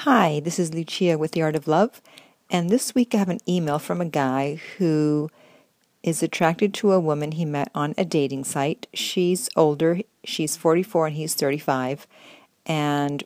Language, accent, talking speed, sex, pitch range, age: English, American, 175 wpm, female, 150-190 Hz, 50-69